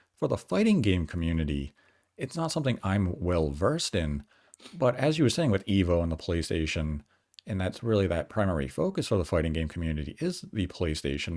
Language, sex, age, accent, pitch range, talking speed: English, male, 40-59, American, 85-130 Hz, 190 wpm